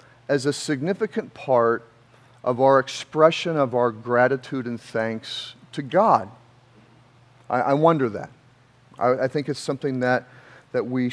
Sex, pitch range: male, 125-180 Hz